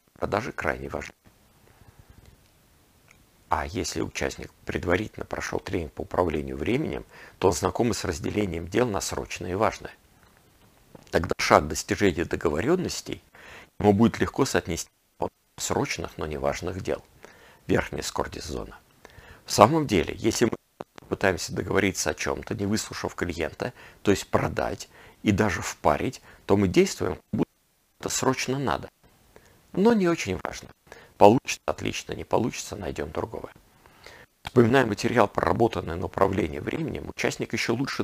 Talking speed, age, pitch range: 130 wpm, 50-69, 85-110 Hz